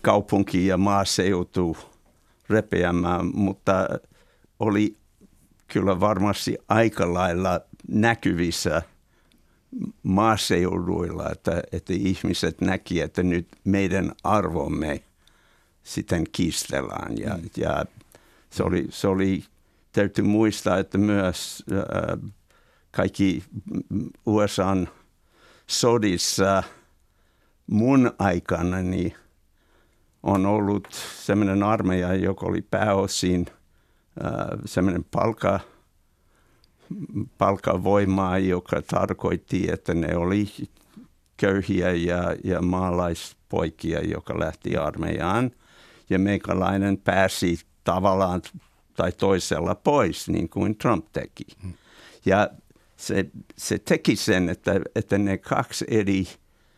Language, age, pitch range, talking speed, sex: Finnish, 60-79, 90-100 Hz, 85 wpm, male